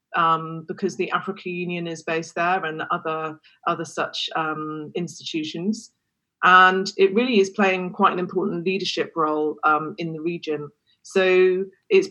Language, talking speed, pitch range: English, 150 wpm, 160-190 Hz